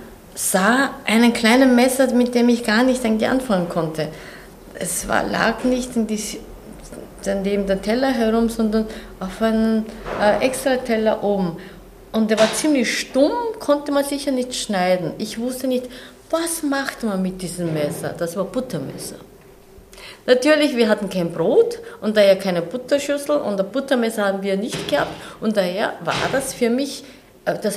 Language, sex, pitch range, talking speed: German, female, 190-260 Hz, 155 wpm